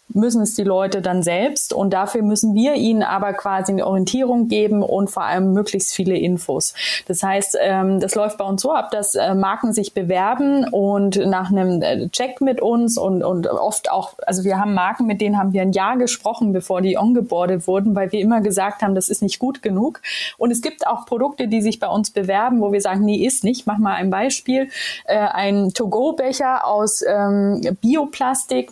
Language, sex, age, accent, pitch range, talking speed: German, female, 20-39, German, 195-230 Hz, 200 wpm